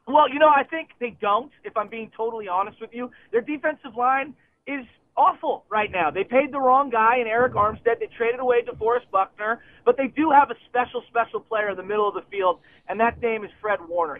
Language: English